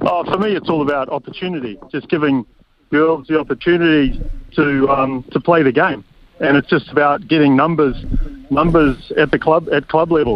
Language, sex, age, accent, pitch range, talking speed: English, male, 40-59, Australian, 130-165 Hz, 180 wpm